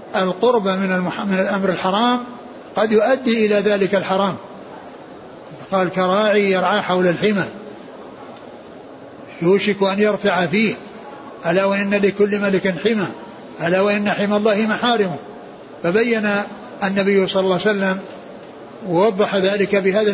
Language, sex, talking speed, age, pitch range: Arabic, male, 115 wpm, 60-79, 185-210 Hz